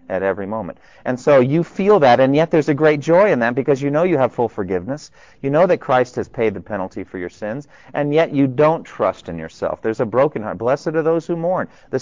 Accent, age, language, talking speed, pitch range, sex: American, 40-59, English, 255 wpm, 115-155 Hz, male